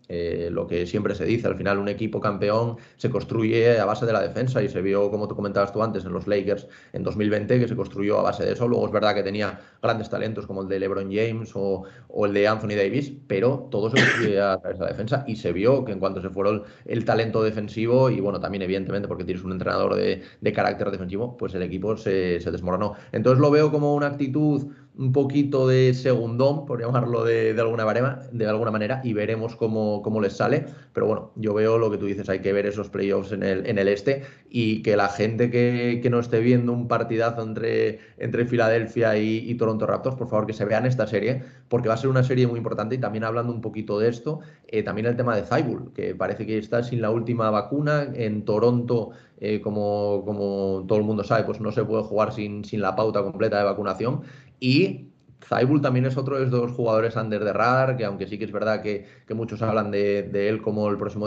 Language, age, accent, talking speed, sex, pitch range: Spanish, 30-49, Spanish, 235 wpm, male, 100-120 Hz